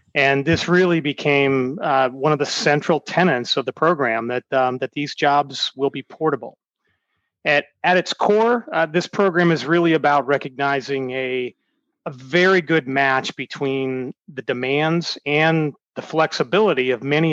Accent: American